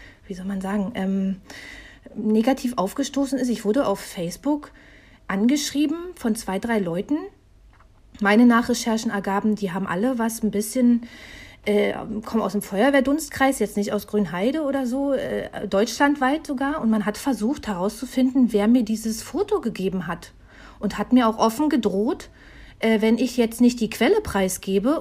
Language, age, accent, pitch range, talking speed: German, 40-59, German, 205-255 Hz, 155 wpm